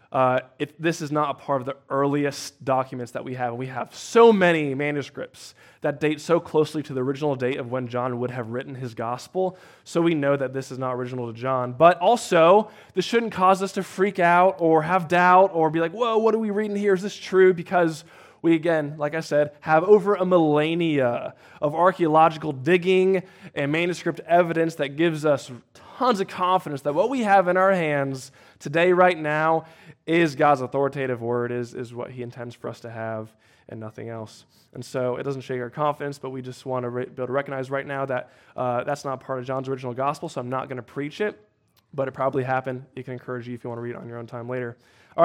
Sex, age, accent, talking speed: male, 20-39, American, 230 wpm